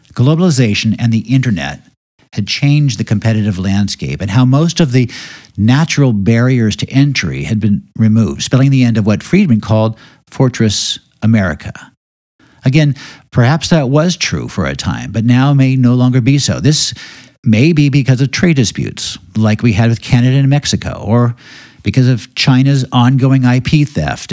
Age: 60-79